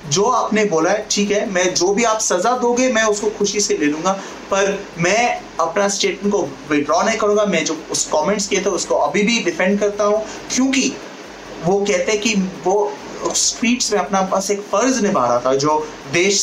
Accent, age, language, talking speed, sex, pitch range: native, 30-49, Hindi, 55 wpm, male, 145-205 Hz